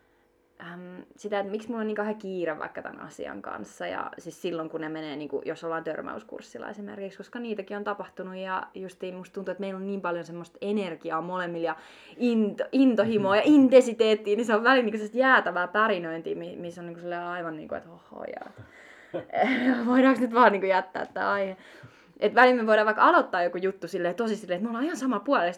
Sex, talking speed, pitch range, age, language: female, 195 wpm, 170-215 Hz, 20-39, Finnish